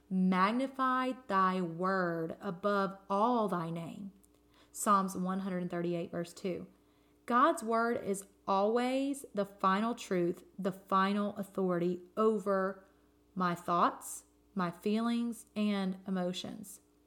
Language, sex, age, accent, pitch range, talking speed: English, female, 30-49, American, 180-225 Hz, 100 wpm